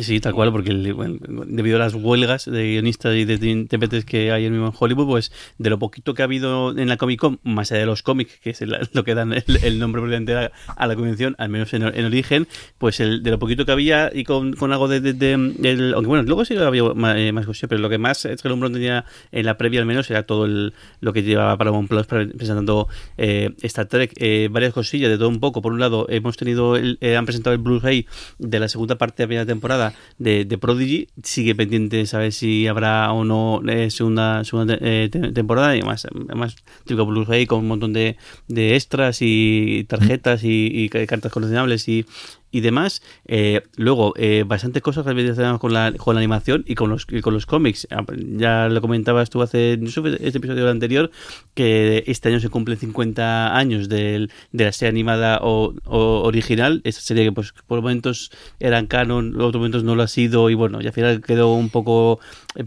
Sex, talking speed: male, 215 wpm